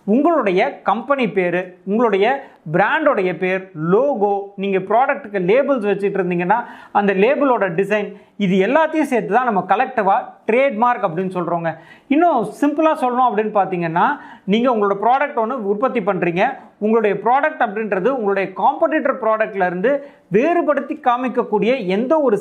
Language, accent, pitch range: Tamil, native, 195-270 Hz